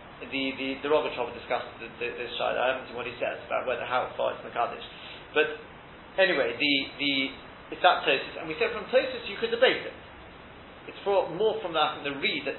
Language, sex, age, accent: English, male, 40-59, British